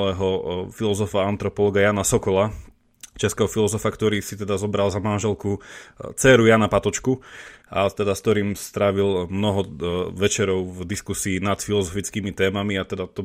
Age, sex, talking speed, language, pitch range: 30-49, male, 140 wpm, Slovak, 95-115 Hz